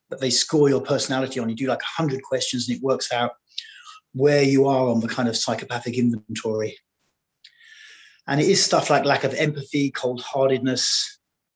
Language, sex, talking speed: English, male, 170 wpm